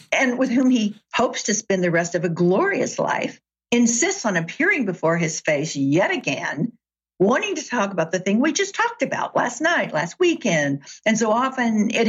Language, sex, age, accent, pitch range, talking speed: English, female, 60-79, American, 160-225 Hz, 195 wpm